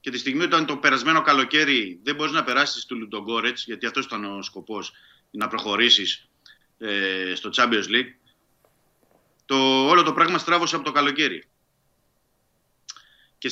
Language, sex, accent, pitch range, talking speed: Greek, male, native, 120-150 Hz, 145 wpm